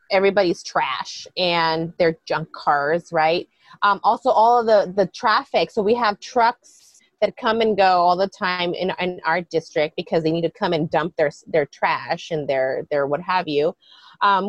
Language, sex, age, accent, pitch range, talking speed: English, female, 30-49, American, 175-220 Hz, 190 wpm